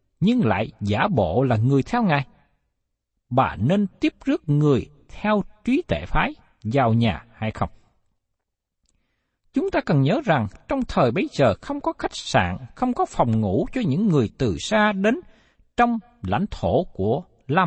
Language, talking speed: Vietnamese, 165 wpm